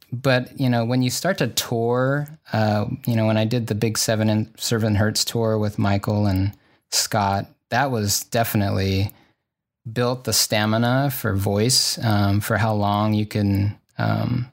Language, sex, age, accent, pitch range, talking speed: English, male, 20-39, American, 105-125 Hz, 165 wpm